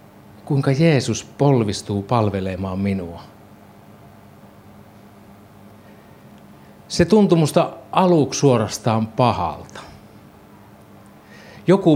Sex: male